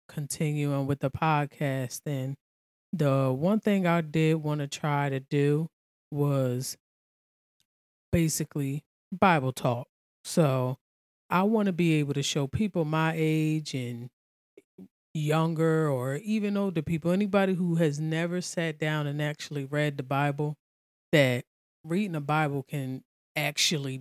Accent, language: American, English